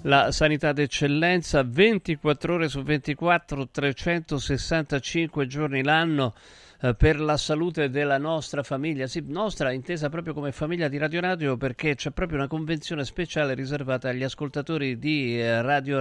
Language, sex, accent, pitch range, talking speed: Italian, male, native, 120-155 Hz, 130 wpm